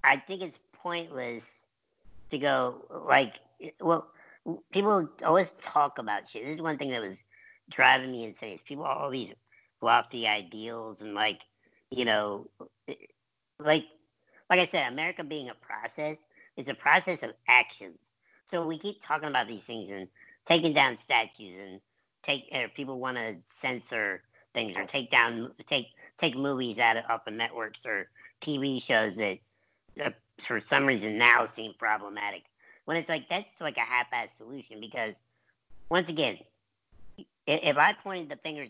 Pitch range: 115-155 Hz